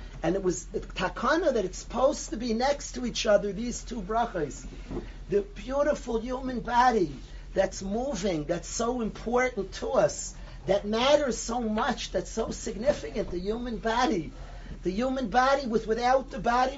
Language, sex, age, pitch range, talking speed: English, male, 40-59, 195-245 Hz, 160 wpm